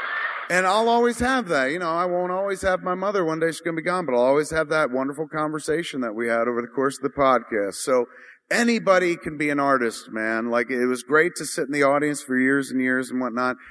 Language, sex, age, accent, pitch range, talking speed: English, male, 40-59, American, 115-145 Hz, 255 wpm